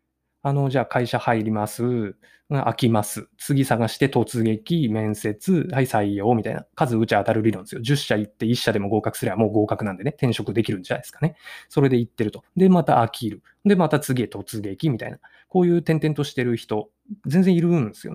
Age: 20-39